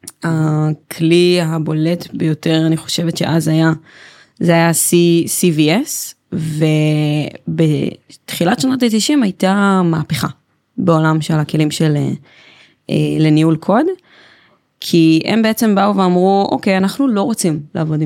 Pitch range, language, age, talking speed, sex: 160-195 Hz, Hebrew, 20-39, 105 wpm, female